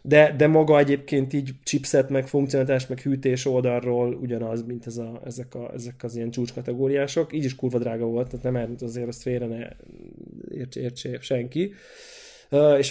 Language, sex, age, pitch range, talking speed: Hungarian, male, 20-39, 120-140 Hz, 170 wpm